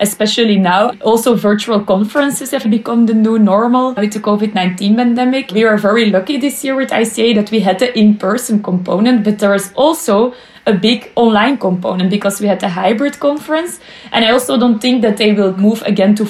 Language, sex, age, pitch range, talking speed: English, female, 20-39, 205-255 Hz, 195 wpm